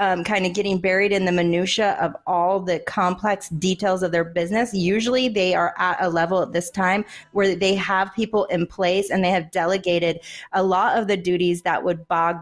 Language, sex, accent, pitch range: English, female, American, 170-205 Hz